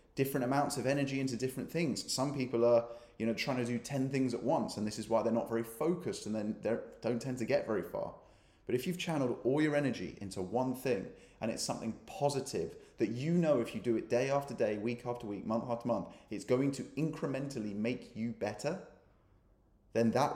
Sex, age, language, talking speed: male, 20-39, English, 220 wpm